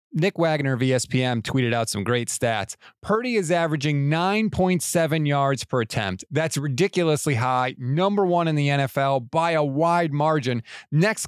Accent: American